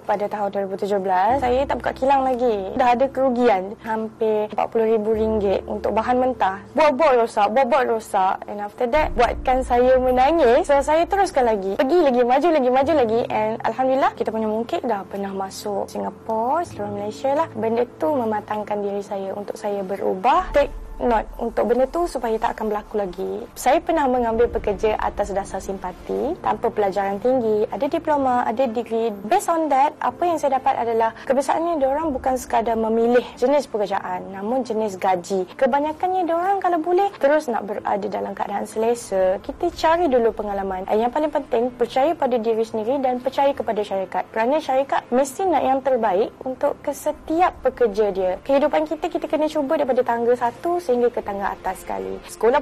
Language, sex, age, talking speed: Malay, female, 20-39, 170 wpm